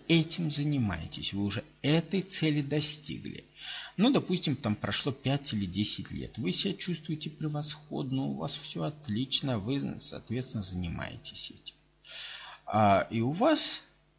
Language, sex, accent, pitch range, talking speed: Russian, male, native, 120-185 Hz, 125 wpm